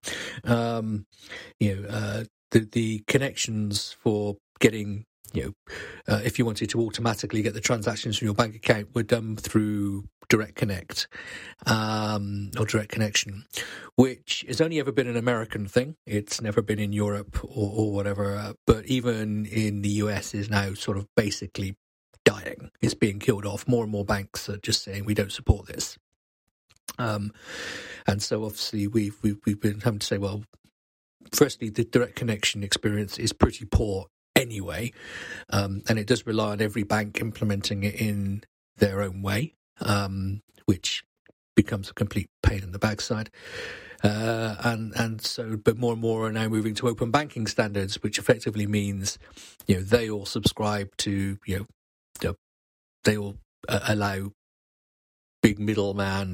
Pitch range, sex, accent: 100-115 Hz, male, British